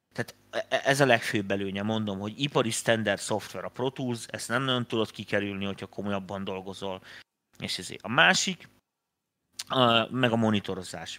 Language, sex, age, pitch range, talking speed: Hungarian, male, 30-49, 100-125 Hz, 150 wpm